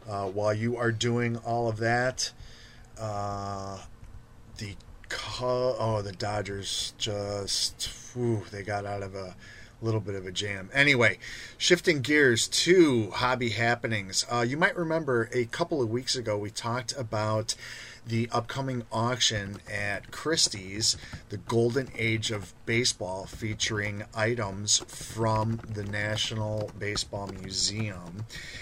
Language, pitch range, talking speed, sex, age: English, 105-120 Hz, 130 wpm, male, 30-49